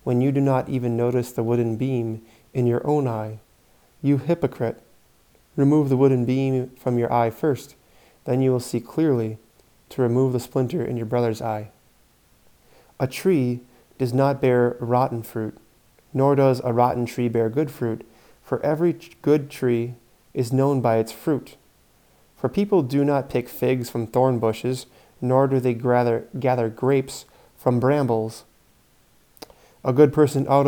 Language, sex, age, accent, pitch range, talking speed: English, male, 30-49, American, 120-135 Hz, 155 wpm